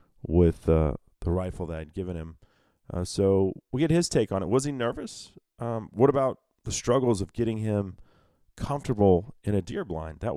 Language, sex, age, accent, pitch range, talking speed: English, male, 30-49, American, 90-115 Hz, 190 wpm